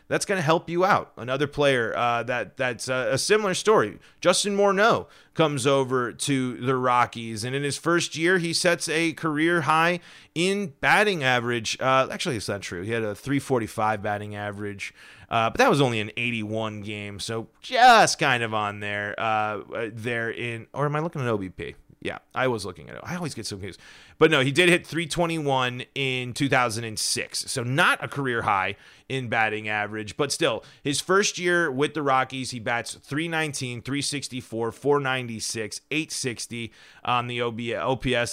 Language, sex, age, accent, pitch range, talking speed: English, male, 30-49, American, 115-155 Hz, 175 wpm